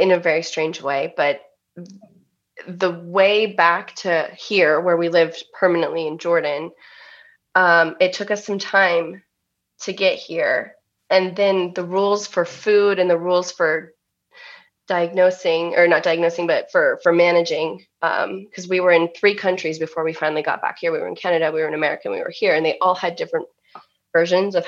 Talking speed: 185 wpm